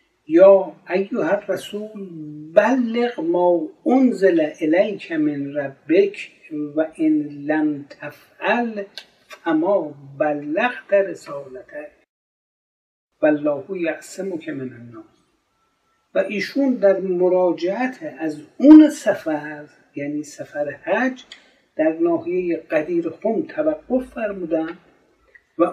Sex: male